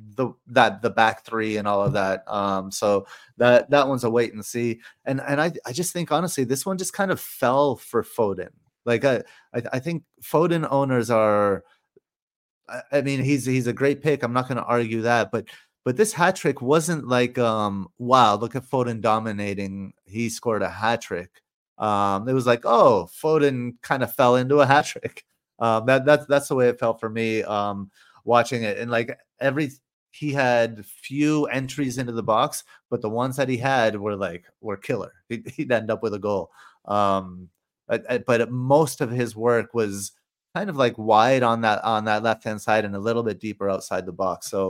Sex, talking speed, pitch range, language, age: male, 210 wpm, 105-135 Hz, English, 30-49